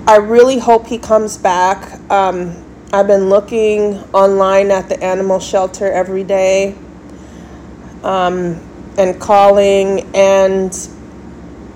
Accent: American